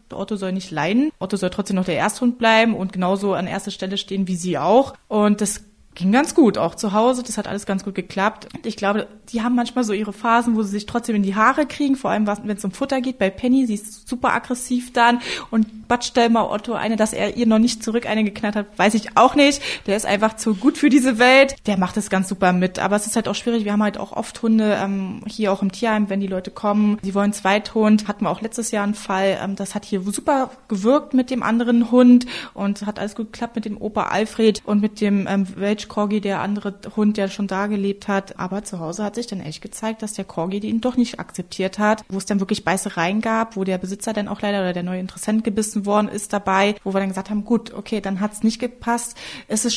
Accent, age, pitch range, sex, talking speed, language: German, 20-39, 195-230 Hz, female, 250 wpm, German